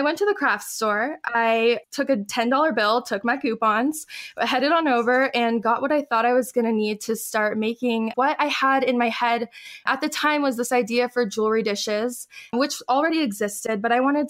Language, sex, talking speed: English, female, 210 wpm